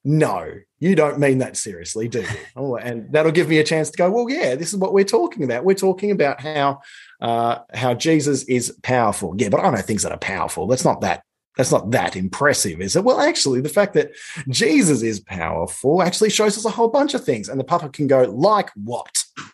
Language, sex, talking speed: English, male, 225 wpm